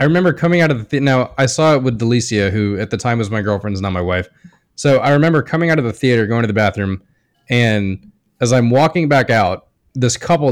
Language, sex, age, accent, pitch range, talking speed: English, male, 20-39, American, 105-135 Hz, 245 wpm